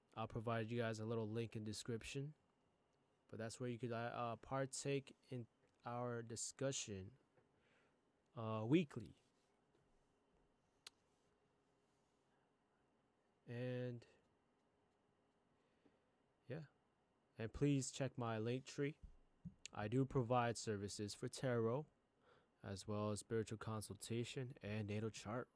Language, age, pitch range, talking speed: English, 20-39, 105-120 Hz, 105 wpm